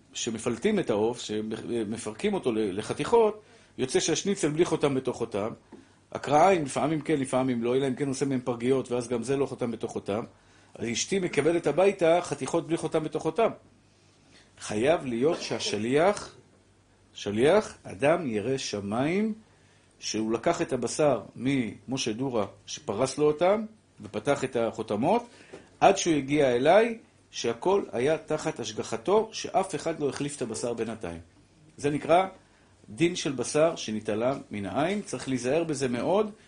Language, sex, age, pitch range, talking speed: Hebrew, male, 50-69, 115-155 Hz, 140 wpm